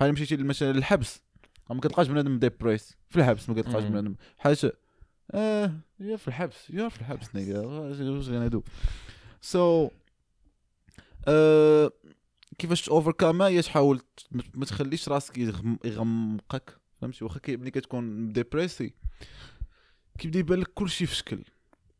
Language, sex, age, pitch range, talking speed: Arabic, male, 20-39, 125-165 Hz, 115 wpm